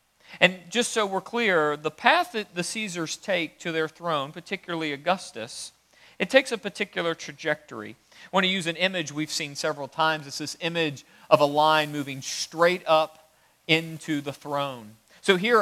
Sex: male